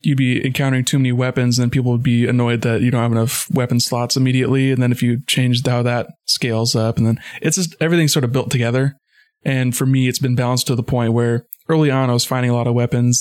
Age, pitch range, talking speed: 20-39, 120-130 Hz, 255 wpm